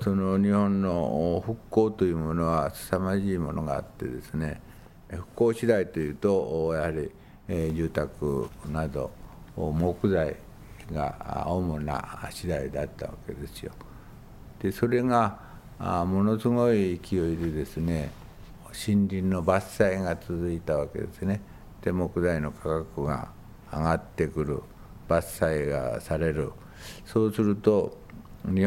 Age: 60-79